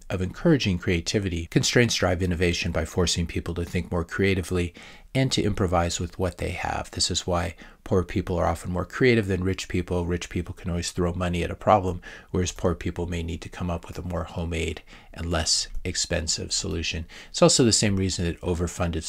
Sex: male